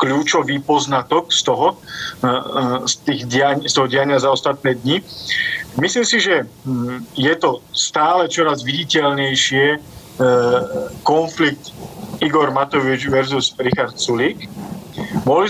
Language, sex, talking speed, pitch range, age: Slovak, male, 110 wpm, 130-155 Hz, 40-59